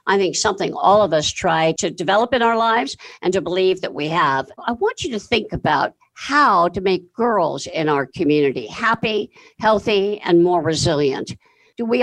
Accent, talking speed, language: American, 190 wpm, English